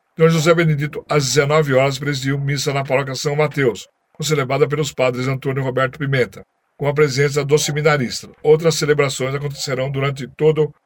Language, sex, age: Portuguese, male, 60-79